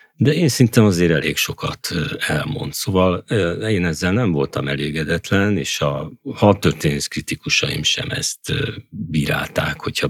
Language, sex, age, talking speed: Hungarian, male, 50-69, 130 wpm